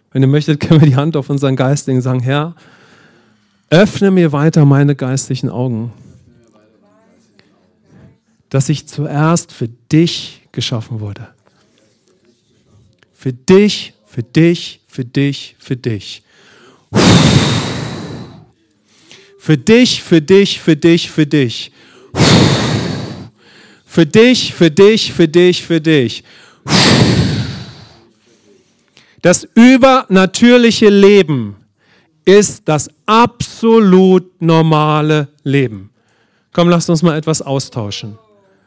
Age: 40-59